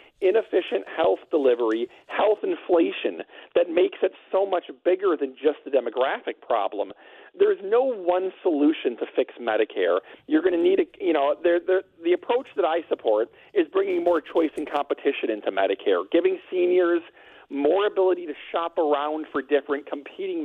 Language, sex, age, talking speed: English, male, 40-59, 160 wpm